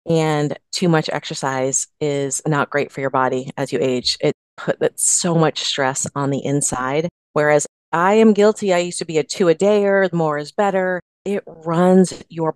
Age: 30-49